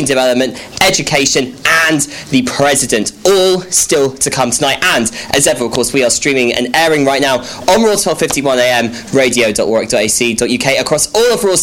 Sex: male